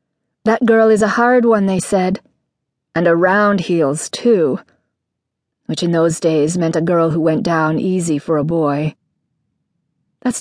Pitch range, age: 165-225 Hz, 40-59